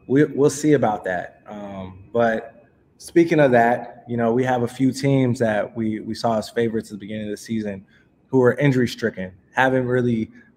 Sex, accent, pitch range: male, American, 110-130 Hz